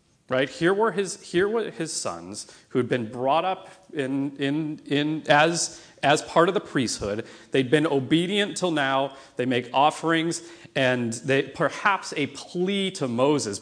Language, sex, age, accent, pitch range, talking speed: English, male, 40-59, American, 135-175 Hz, 165 wpm